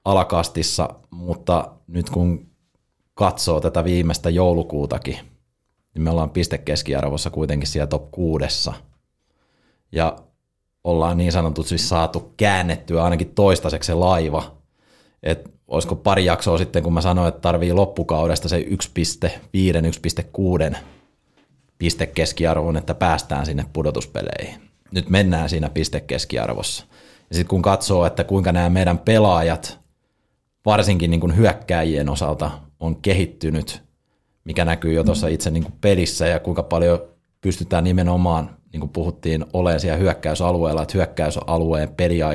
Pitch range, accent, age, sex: 80-90 Hz, native, 30-49, male